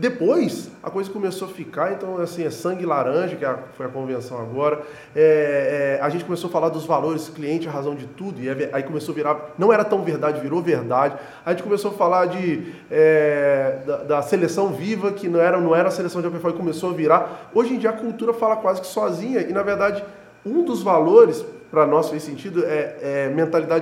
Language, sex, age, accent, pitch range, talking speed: Portuguese, male, 20-39, Brazilian, 150-200 Hz, 225 wpm